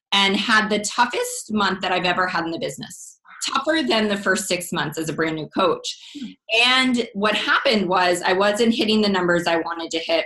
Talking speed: 210 wpm